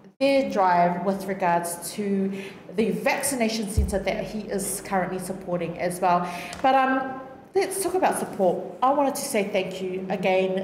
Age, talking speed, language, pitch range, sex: 30-49, 160 wpm, English, 185-245 Hz, female